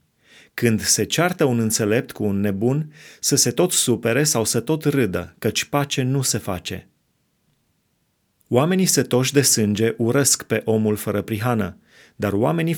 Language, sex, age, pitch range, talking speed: Romanian, male, 30-49, 110-135 Hz, 155 wpm